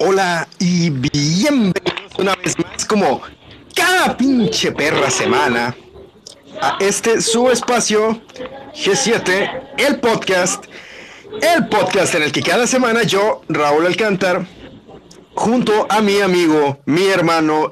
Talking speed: 115 wpm